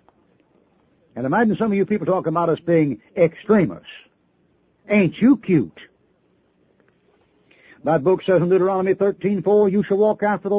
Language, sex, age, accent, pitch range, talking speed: English, male, 60-79, American, 170-205 Hz, 145 wpm